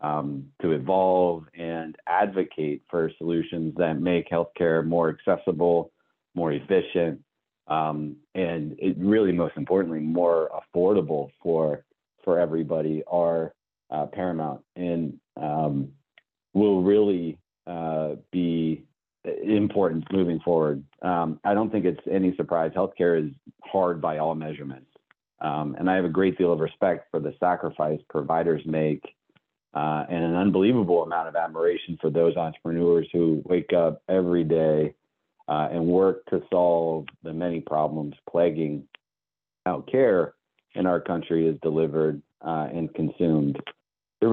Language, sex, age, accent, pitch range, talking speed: English, male, 40-59, American, 80-90 Hz, 135 wpm